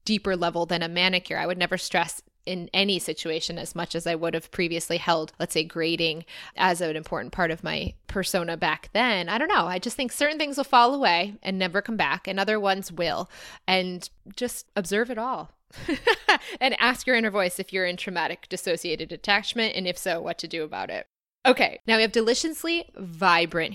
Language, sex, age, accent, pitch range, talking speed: English, female, 20-39, American, 170-215 Hz, 205 wpm